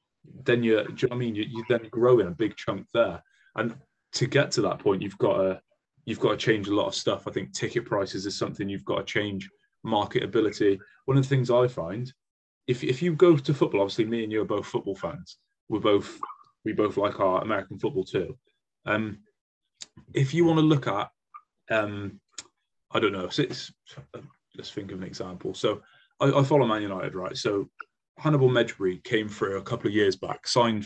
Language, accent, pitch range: English, British, 100-135 Hz